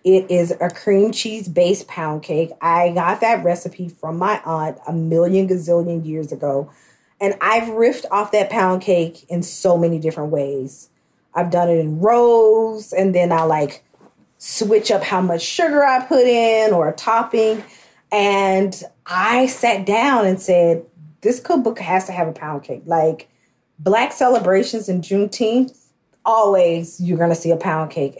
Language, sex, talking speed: English, female, 170 wpm